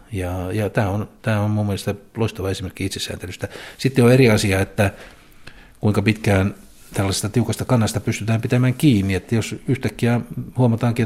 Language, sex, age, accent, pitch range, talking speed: Finnish, male, 60-79, native, 90-110 Hz, 145 wpm